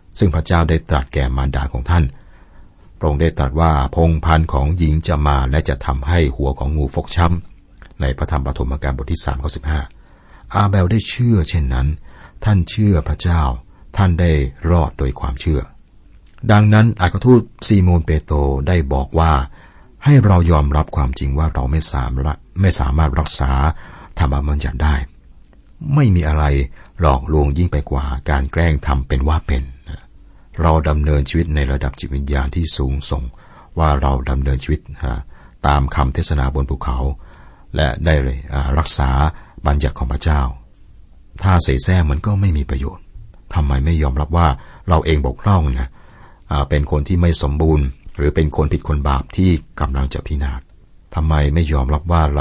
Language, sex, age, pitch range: Thai, male, 60-79, 70-85 Hz